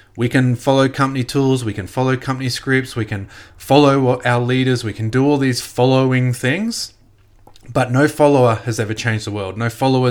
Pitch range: 105-125 Hz